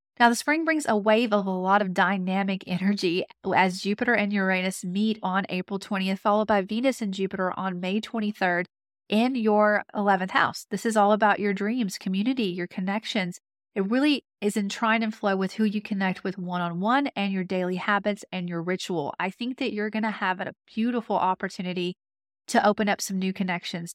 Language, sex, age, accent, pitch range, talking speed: English, female, 30-49, American, 185-215 Hz, 195 wpm